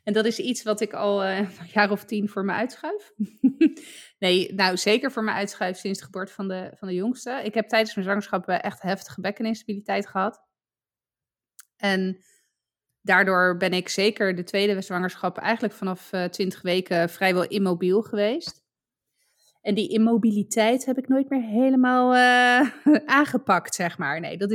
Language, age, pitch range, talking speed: Dutch, 20-39, 185-225 Hz, 160 wpm